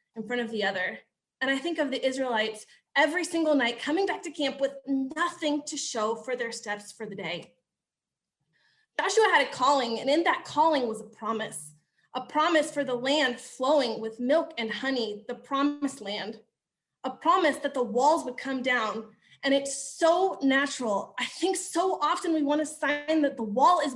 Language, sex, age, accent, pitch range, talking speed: English, female, 20-39, American, 245-320 Hz, 190 wpm